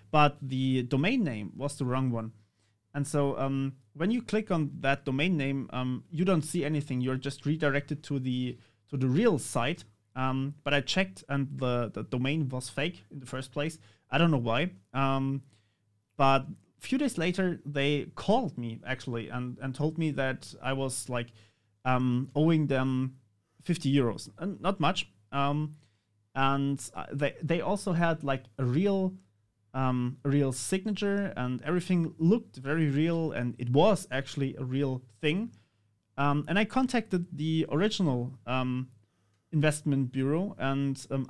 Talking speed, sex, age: 165 wpm, male, 30-49